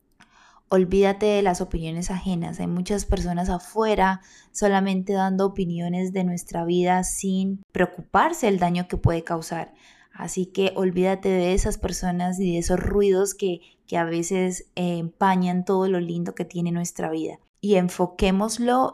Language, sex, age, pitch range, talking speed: Spanish, female, 20-39, 175-200 Hz, 150 wpm